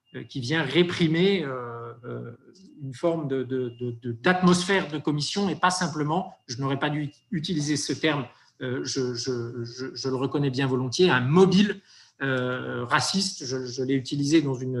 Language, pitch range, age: French, 120-160 Hz, 50-69